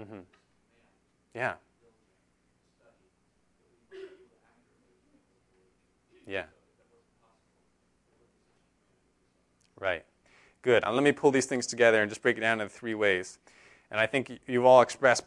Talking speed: 100 wpm